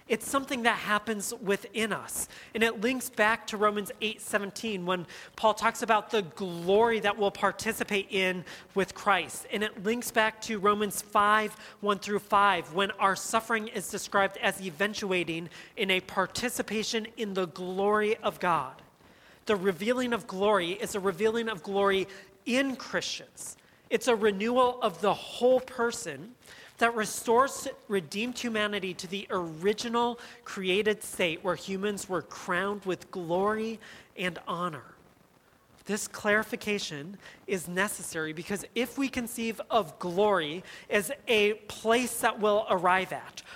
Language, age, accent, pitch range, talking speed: English, 40-59, American, 195-230 Hz, 140 wpm